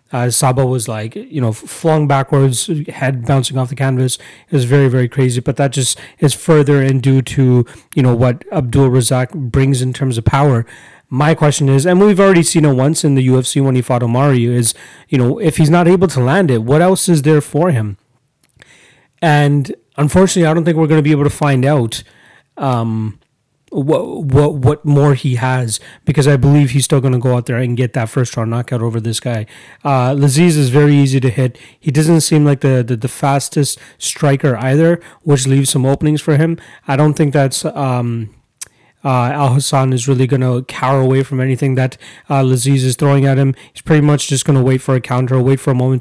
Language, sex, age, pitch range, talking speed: English, male, 30-49, 125-145 Hz, 215 wpm